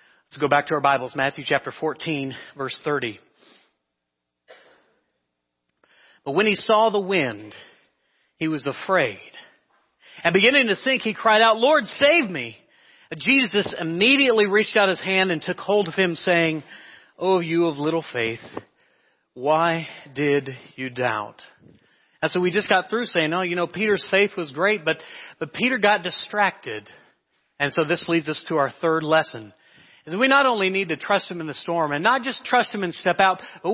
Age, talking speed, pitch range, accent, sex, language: 40-59, 175 wpm, 155-205 Hz, American, male, English